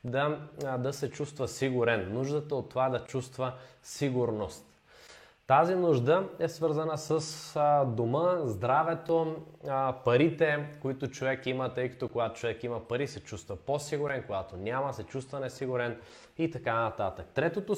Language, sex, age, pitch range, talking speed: Bulgarian, male, 20-39, 115-145 Hz, 140 wpm